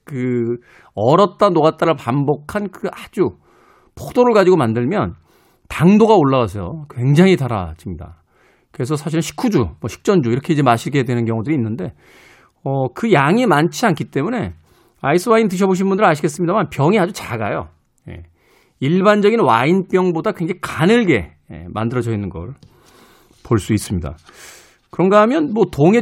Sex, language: male, Korean